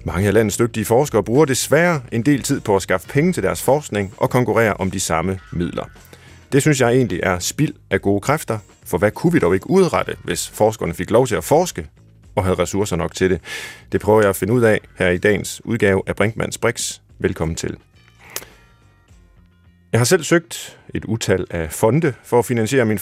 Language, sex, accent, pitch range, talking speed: Danish, male, native, 90-120 Hz, 210 wpm